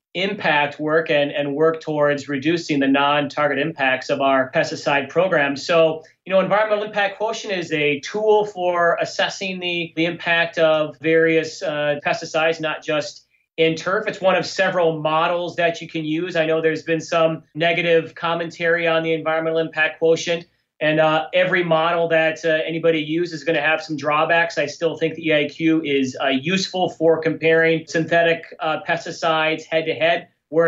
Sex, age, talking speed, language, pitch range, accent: male, 30-49, 170 wpm, English, 155-180 Hz, American